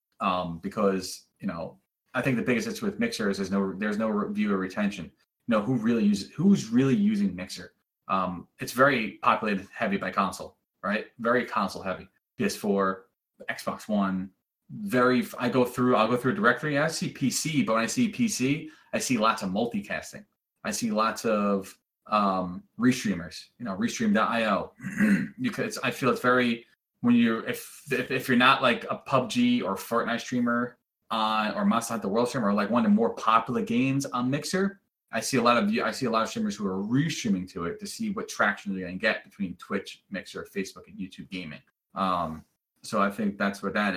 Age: 20-39